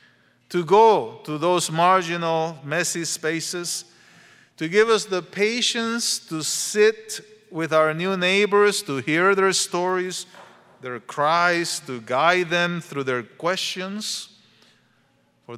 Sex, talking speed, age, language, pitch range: male, 120 wpm, 40-59, English, 140-190 Hz